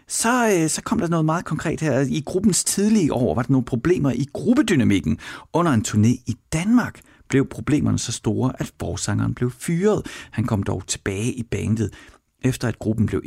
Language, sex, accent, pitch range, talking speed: Danish, male, native, 100-135 Hz, 185 wpm